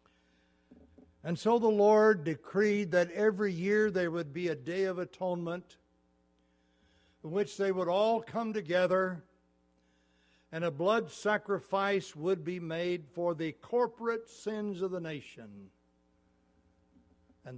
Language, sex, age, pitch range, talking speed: English, male, 60-79, 110-180 Hz, 125 wpm